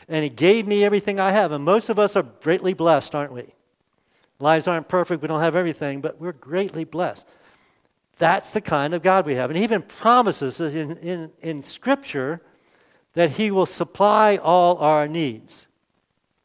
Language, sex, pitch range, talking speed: English, male, 140-180 Hz, 180 wpm